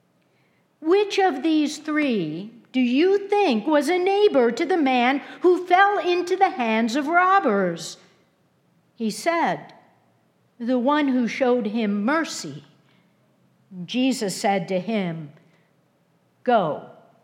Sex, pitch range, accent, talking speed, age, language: female, 230-320 Hz, American, 115 wpm, 60-79, English